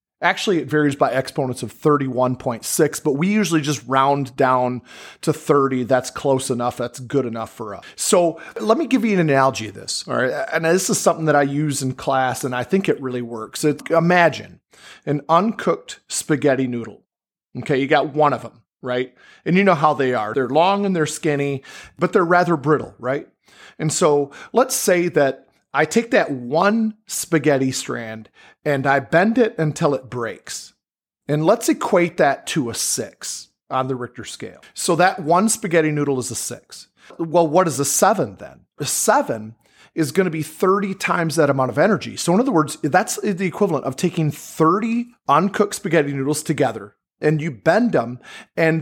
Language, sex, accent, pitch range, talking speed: English, male, American, 135-175 Hz, 185 wpm